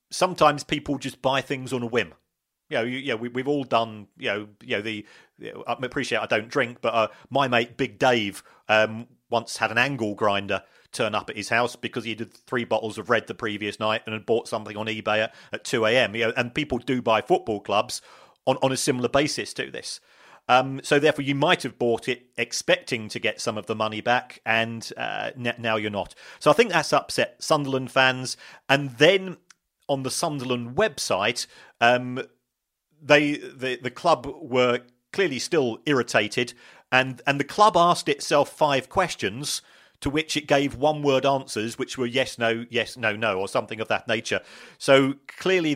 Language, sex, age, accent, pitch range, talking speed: English, male, 40-59, British, 115-140 Hz, 195 wpm